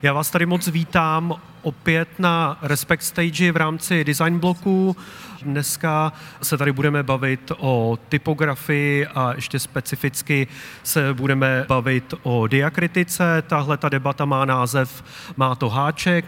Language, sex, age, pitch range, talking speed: Czech, male, 30-49, 140-165 Hz, 135 wpm